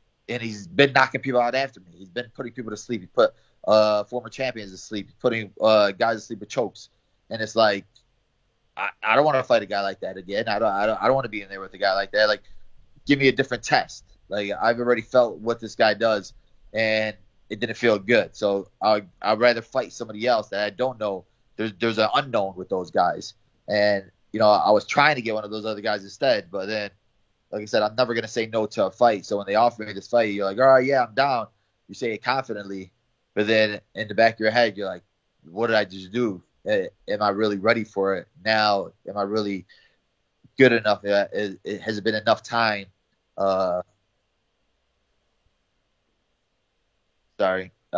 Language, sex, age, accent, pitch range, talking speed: English, male, 20-39, American, 100-115 Hz, 225 wpm